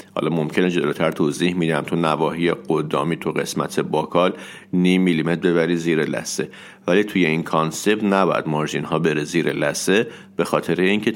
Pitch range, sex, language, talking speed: 80-105 Hz, male, Persian, 150 wpm